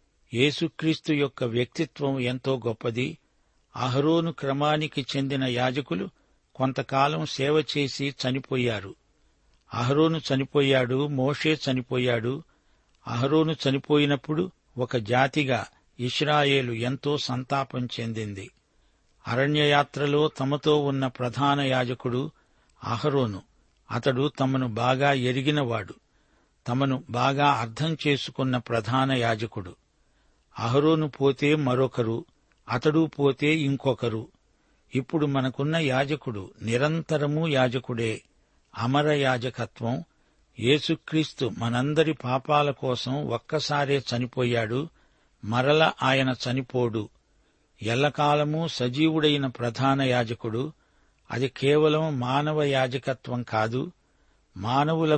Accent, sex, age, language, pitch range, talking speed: native, male, 60-79, Telugu, 125-145 Hz, 80 wpm